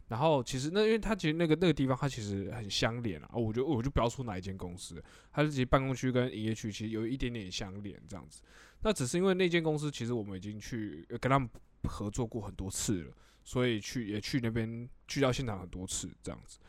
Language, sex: Chinese, male